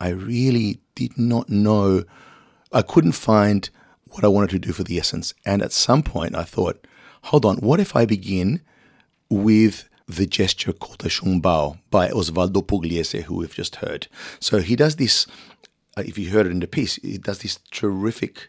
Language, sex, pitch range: English, male, 90-105 Hz